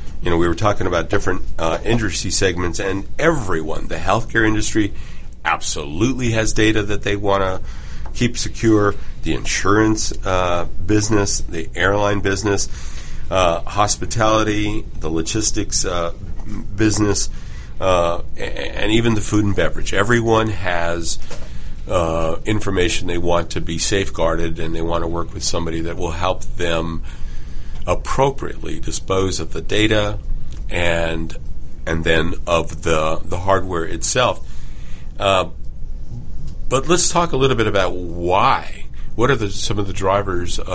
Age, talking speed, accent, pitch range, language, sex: 40-59, 135 wpm, American, 80-105 Hz, English, male